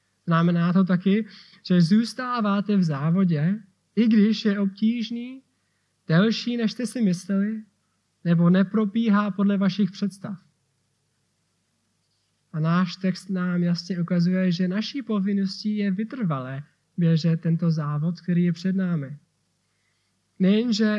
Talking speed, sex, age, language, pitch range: 115 wpm, male, 20-39, Czech, 165-200 Hz